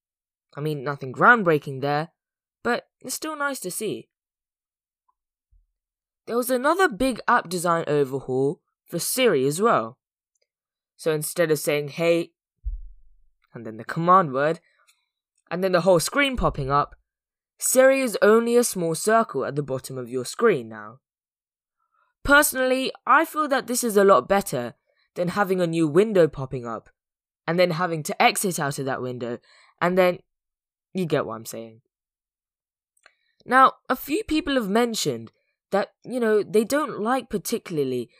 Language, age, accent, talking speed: English, 10-29, British, 150 wpm